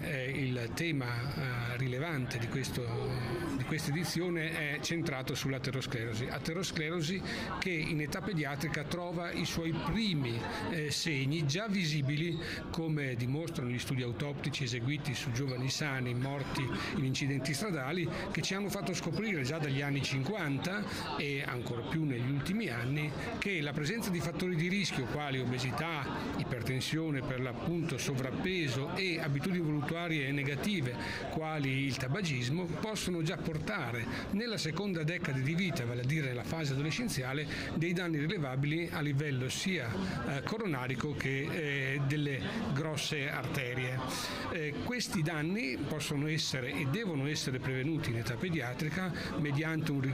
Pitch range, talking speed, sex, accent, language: 135-165 Hz, 130 wpm, male, native, Italian